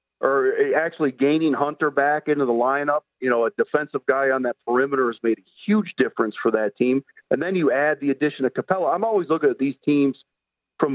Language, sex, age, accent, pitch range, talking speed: English, male, 50-69, American, 135-185 Hz, 215 wpm